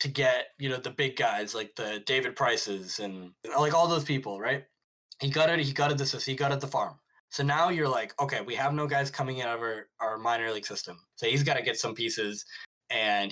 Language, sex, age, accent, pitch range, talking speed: English, male, 10-29, American, 115-155 Hz, 250 wpm